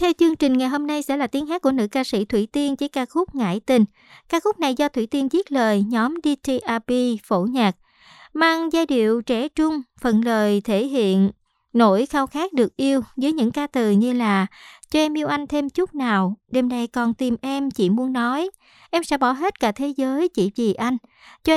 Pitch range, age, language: 230-290 Hz, 60-79, Vietnamese